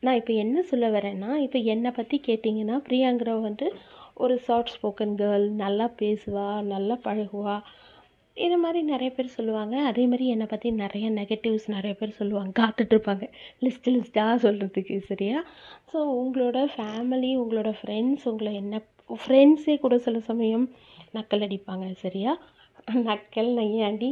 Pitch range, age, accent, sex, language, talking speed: 210-255 Hz, 30-49, native, female, Tamil, 130 wpm